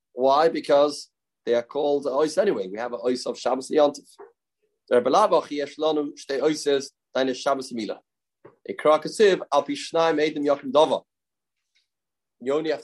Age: 30-49